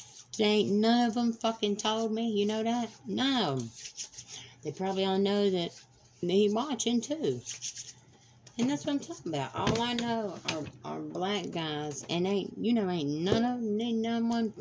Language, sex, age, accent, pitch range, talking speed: English, female, 50-69, American, 120-195 Hz, 180 wpm